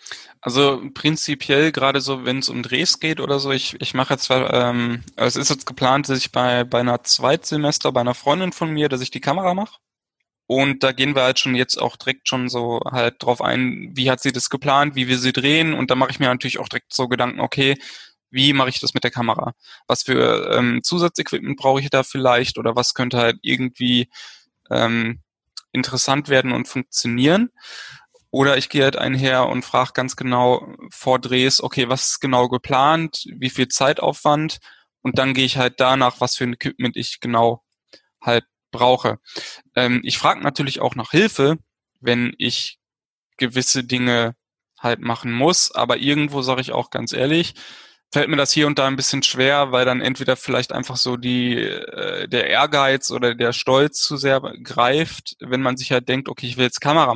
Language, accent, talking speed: German, German, 195 wpm